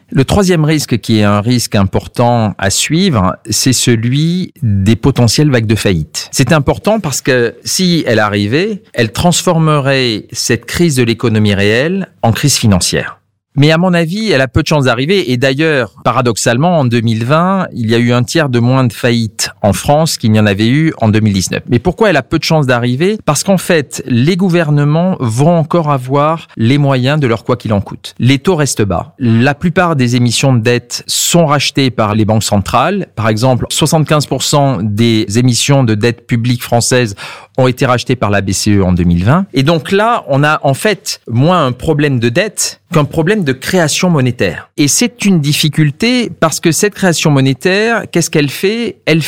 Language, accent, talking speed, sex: French, French, 190 wpm, male